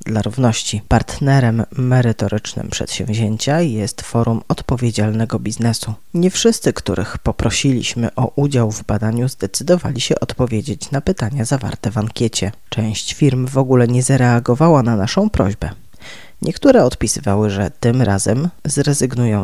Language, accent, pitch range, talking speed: Polish, native, 110-140 Hz, 125 wpm